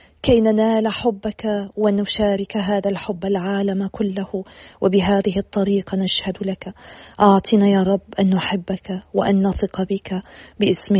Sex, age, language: female, 40-59, Arabic